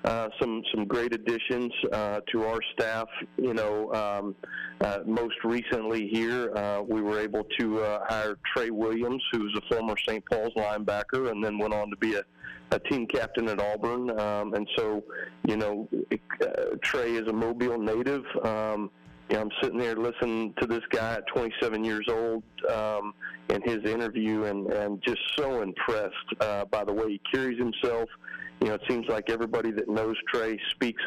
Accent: American